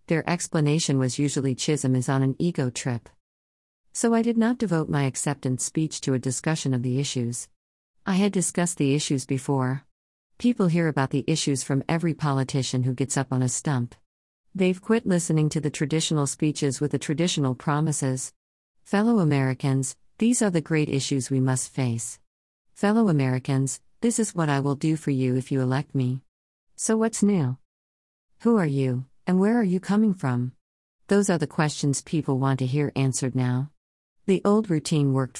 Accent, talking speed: American, 180 wpm